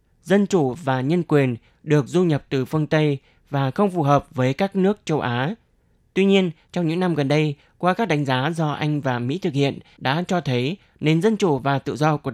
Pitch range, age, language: 140-175 Hz, 20-39, Vietnamese